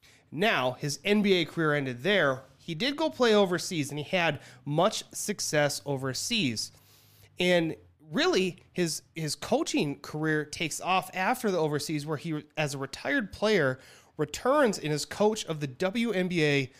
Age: 30-49